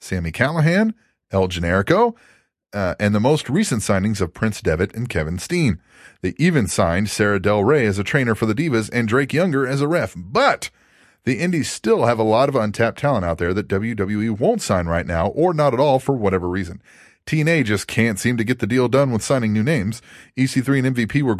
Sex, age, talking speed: male, 30-49, 215 wpm